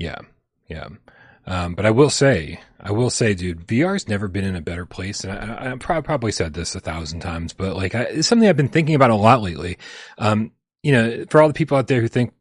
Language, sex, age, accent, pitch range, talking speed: English, male, 30-49, American, 105-140 Hz, 245 wpm